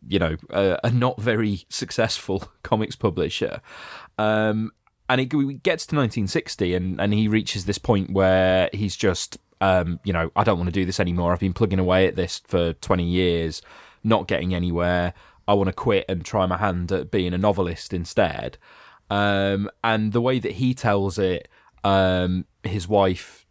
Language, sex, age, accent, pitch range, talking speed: English, male, 20-39, British, 90-105 Hz, 180 wpm